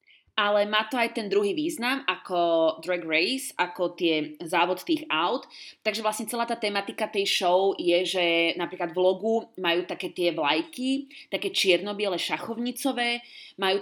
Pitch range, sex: 185-245 Hz, female